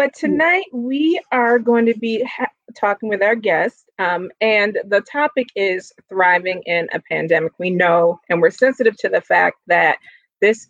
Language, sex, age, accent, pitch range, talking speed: English, female, 30-49, American, 185-235 Hz, 175 wpm